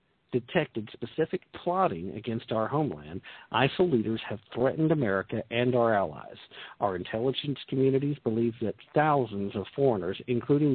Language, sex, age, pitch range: English, male, 50-69, 110-140 Hz